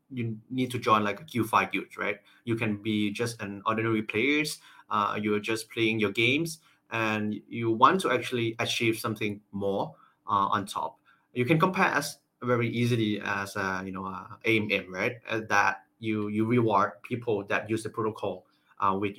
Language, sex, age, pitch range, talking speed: English, male, 20-39, 100-120 Hz, 170 wpm